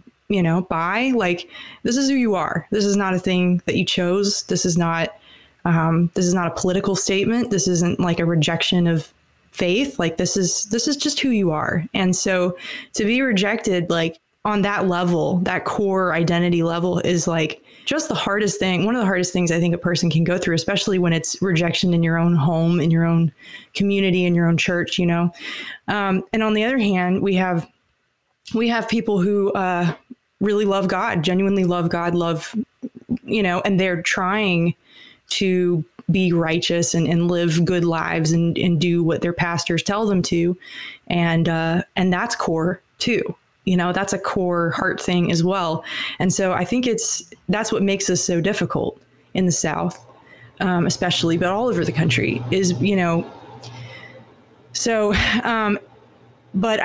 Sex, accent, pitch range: female, American, 170-200 Hz